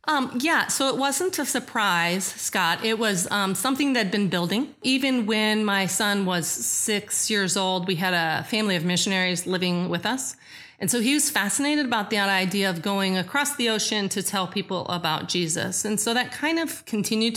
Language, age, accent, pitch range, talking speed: English, 40-59, American, 180-220 Hz, 195 wpm